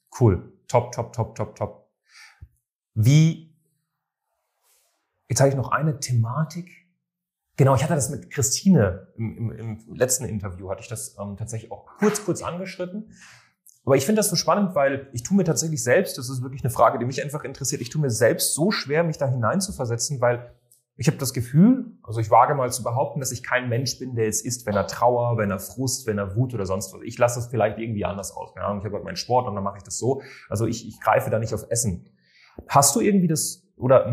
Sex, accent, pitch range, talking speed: male, German, 115-155 Hz, 225 wpm